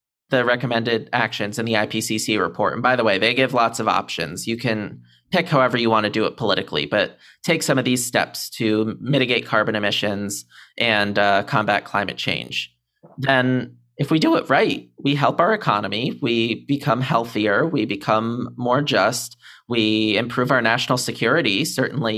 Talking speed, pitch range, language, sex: 175 wpm, 110-135 Hz, English, male